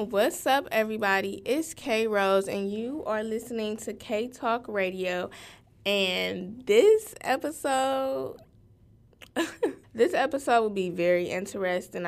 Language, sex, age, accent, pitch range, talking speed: English, female, 10-29, American, 180-230 Hz, 115 wpm